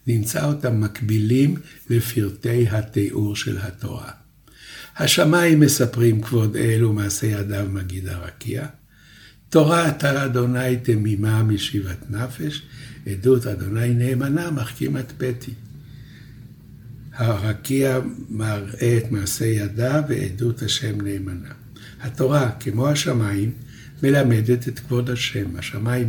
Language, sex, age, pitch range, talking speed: Hebrew, male, 60-79, 110-135 Hz, 95 wpm